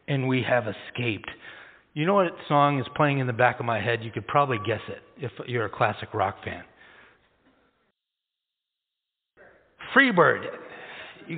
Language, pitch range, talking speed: English, 140-200 Hz, 160 wpm